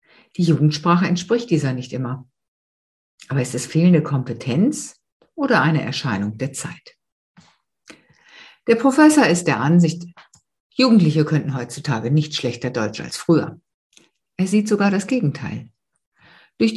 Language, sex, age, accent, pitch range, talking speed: German, female, 60-79, German, 145-195 Hz, 125 wpm